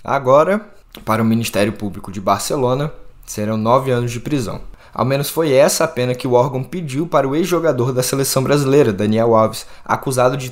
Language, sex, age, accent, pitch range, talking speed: Portuguese, male, 20-39, Brazilian, 110-145 Hz, 185 wpm